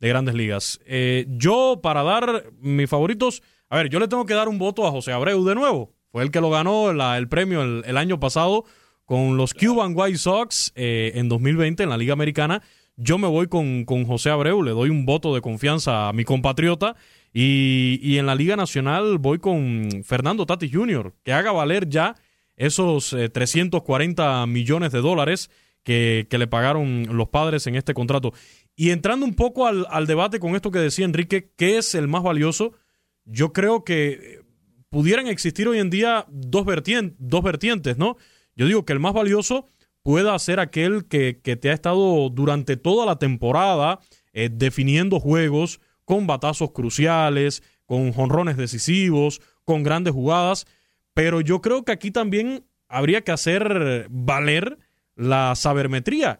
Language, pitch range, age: Spanish, 130-190 Hz, 20-39